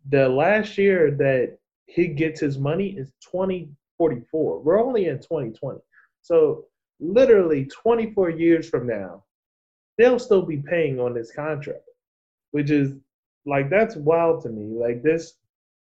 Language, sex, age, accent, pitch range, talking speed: English, male, 20-39, American, 115-165 Hz, 135 wpm